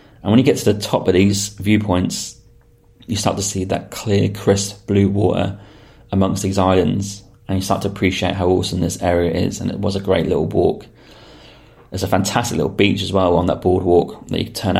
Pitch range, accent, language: 90-100 Hz, British, English